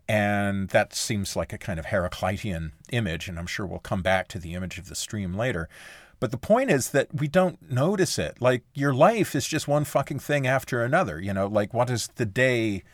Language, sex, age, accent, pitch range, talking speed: English, male, 40-59, American, 100-135 Hz, 225 wpm